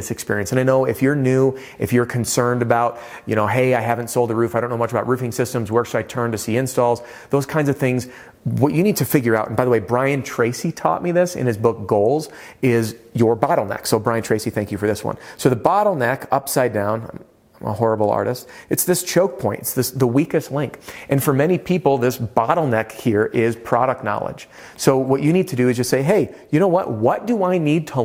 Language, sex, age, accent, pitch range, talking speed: English, male, 30-49, American, 110-130 Hz, 240 wpm